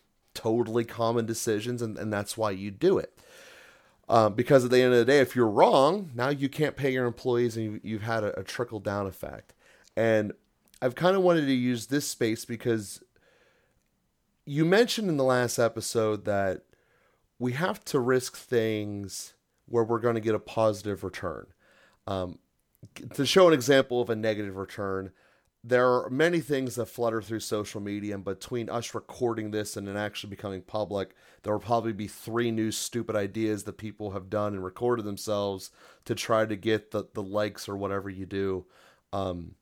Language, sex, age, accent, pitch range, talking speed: English, male, 30-49, American, 105-125 Hz, 185 wpm